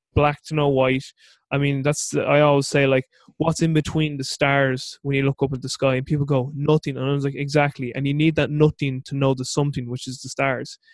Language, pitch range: English, 135-150 Hz